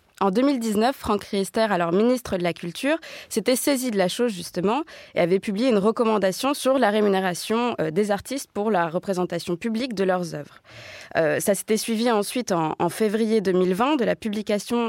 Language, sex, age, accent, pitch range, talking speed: French, female, 20-39, French, 185-235 Hz, 175 wpm